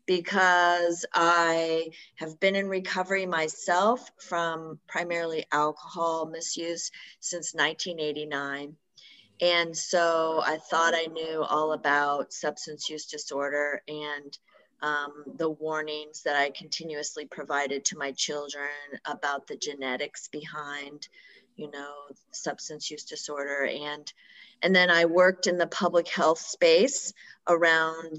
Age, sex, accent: 30-49, female, American